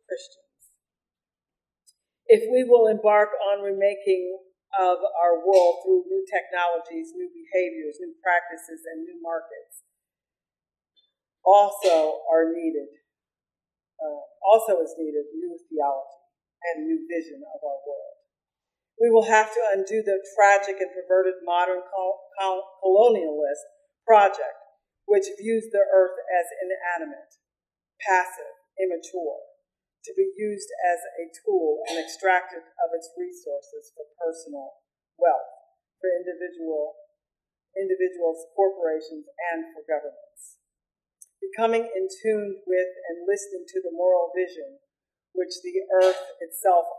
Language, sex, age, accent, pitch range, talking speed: English, female, 50-69, American, 170-245 Hz, 115 wpm